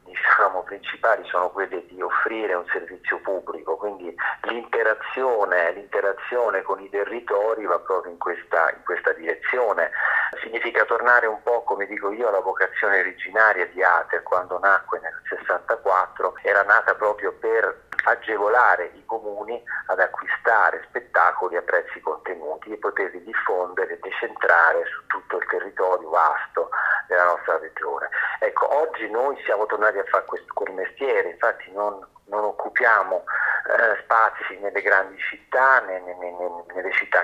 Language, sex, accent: Italian, male, native